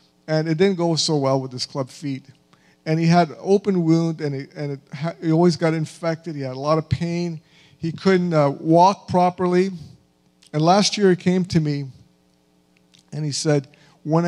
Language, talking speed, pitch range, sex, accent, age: English, 195 wpm, 135-170 Hz, male, American, 50-69